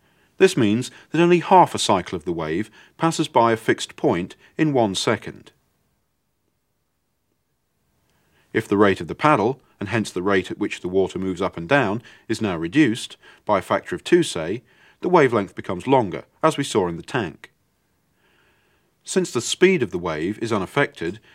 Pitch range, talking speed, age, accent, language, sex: 100-165 Hz, 175 wpm, 40-59, British, English, male